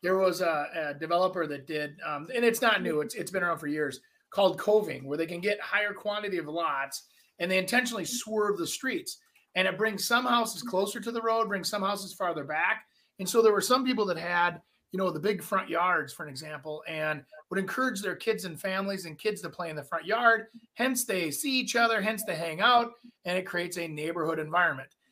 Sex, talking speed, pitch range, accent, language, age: male, 225 wpm, 160-215 Hz, American, English, 30-49